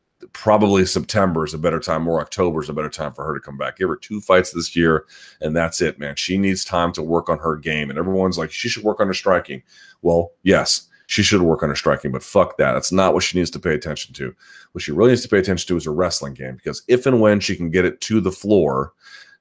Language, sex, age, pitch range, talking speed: English, male, 30-49, 85-100 Hz, 270 wpm